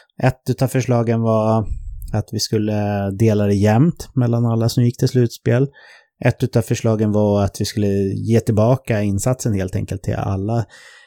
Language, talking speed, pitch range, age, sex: English, 165 wpm, 100-125 Hz, 30-49, male